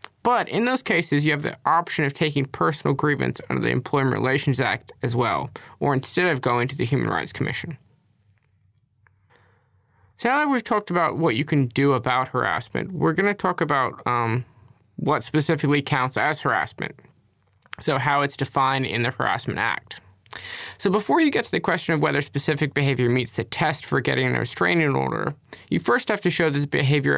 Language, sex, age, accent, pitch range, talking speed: English, male, 20-39, American, 125-175 Hz, 190 wpm